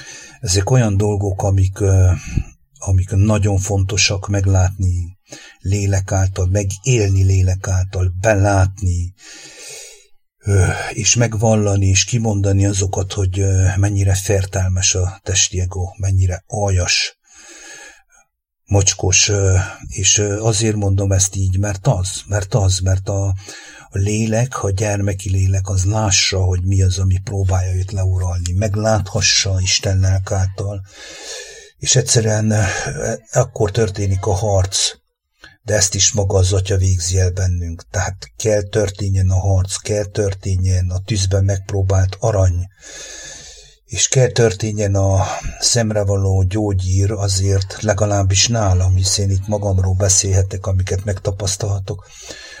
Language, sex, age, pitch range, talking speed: English, male, 50-69, 95-105 Hz, 110 wpm